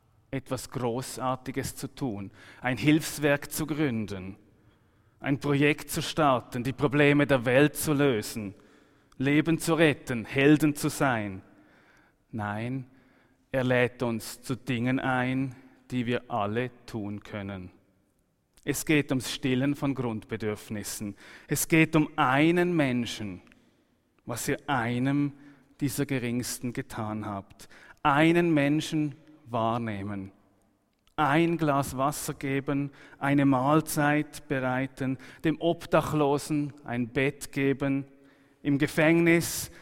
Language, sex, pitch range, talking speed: German, male, 120-145 Hz, 105 wpm